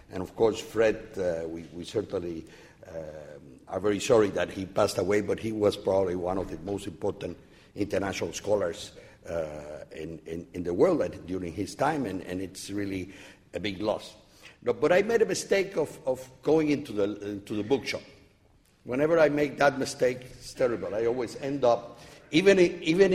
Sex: male